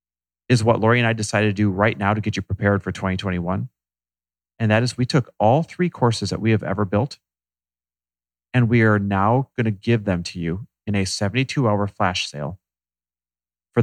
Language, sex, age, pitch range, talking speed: English, male, 40-59, 95-135 Hz, 195 wpm